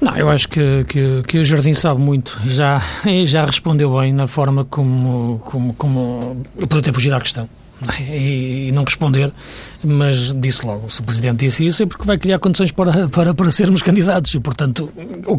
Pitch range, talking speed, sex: 135-155 Hz, 195 wpm, male